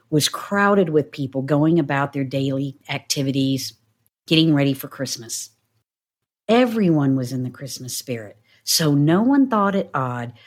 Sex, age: female, 50-69